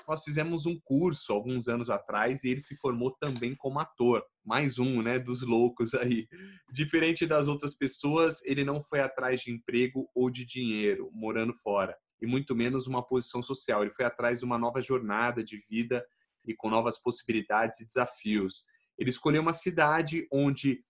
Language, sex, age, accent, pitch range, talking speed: Portuguese, male, 20-39, Brazilian, 115-135 Hz, 175 wpm